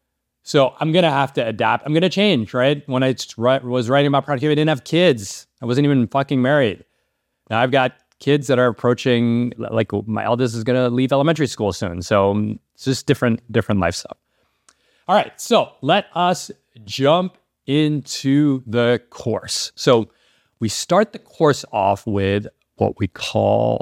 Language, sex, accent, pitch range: English, male, American, 100-135 Hz